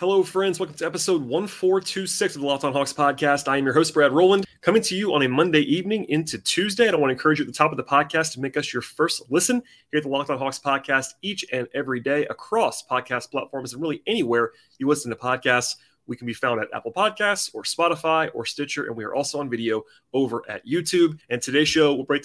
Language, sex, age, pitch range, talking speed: English, male, 30-49, 120-150 Hz, 245 wpm